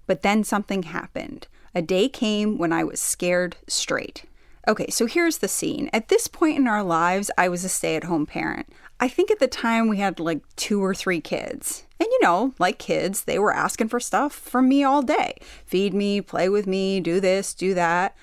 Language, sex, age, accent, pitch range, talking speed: English, female, 30-49, American, 180-250 Hz, 205 wpm